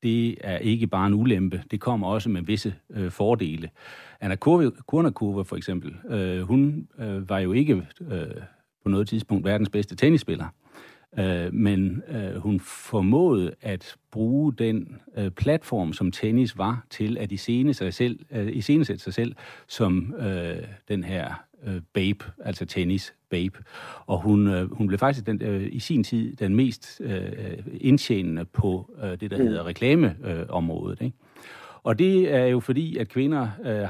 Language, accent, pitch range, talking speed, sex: Danish, native, 95-125 Hz, 160 wpm, male